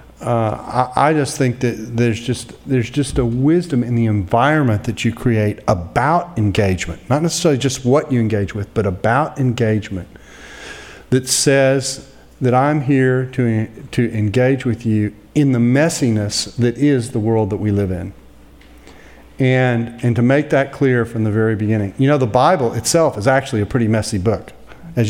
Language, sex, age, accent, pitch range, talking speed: English, male, 40-59, American, 110-135 Hz, 175 wpm